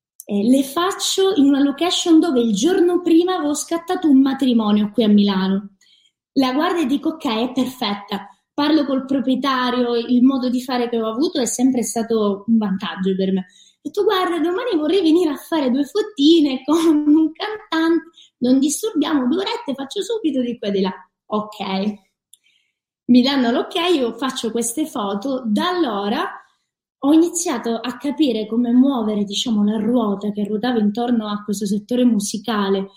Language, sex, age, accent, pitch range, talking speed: Italian, female, 20-39, native, 215-305 Hz, 165 wpm